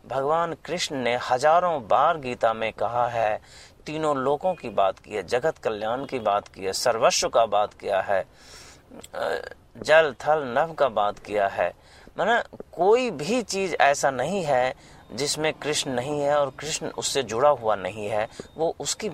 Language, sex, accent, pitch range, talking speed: Hindi, male, native, 125-170 Hz, 165 wpm